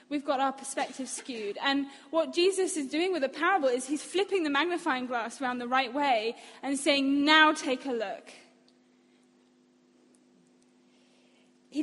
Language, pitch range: English, 260-325 Hz